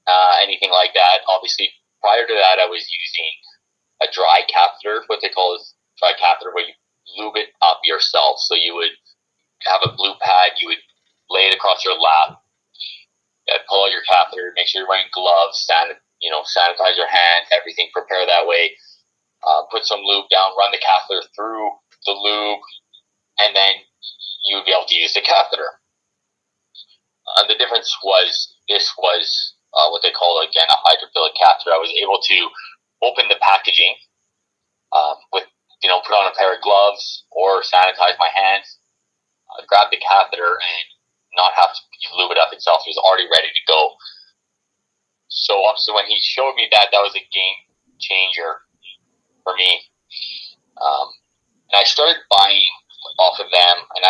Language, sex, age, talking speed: English, male, 30-49, 175 wpm